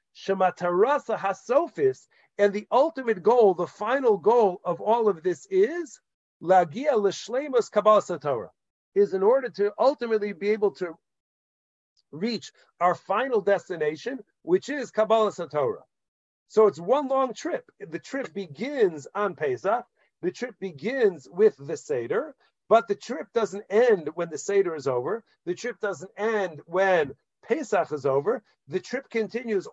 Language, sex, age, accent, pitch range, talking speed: English, male, 50-69, American, 190-255 Hz, 130 wpm